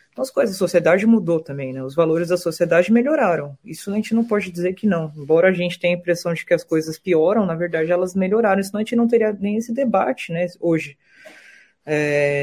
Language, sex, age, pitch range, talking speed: Portuguese, female, 20-39, 175-235 Hz, 220 wpm